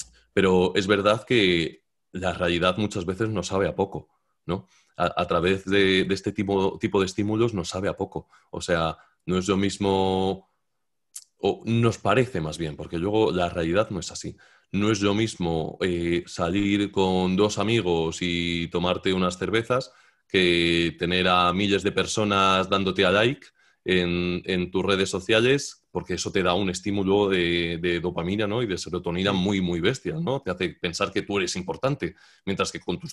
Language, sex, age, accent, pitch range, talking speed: Spanish, male, 30-49, Spanish, 85-100 Hz, 180 wpm